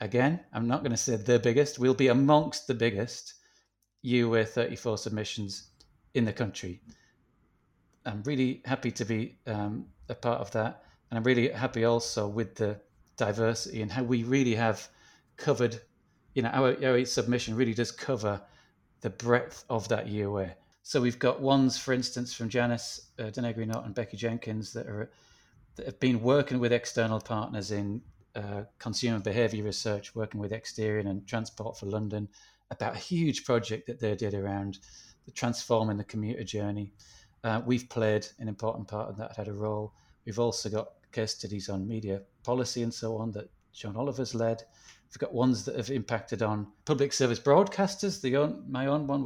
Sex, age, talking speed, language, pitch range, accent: male, 30-49, 175 wpm, English, 105-125 Hz, British